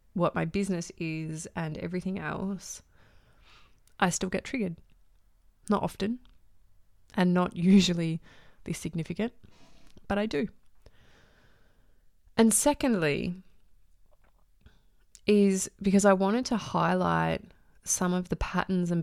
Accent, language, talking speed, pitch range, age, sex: Australian, English, 105 wpm, 150-190 Hz, 20-39, female